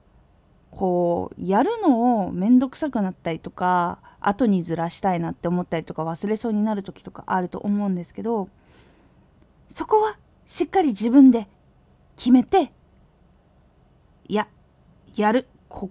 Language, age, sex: Japanese, 20-39, female